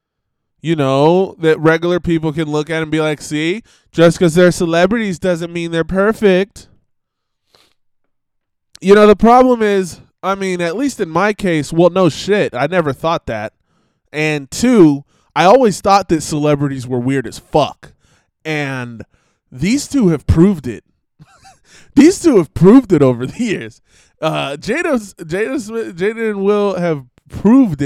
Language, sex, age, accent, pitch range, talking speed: English, male, 20-39, American, 145-205 Hz, 155 wpm